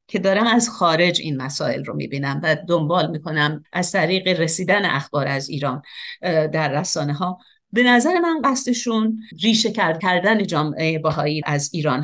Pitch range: 165-235 Hz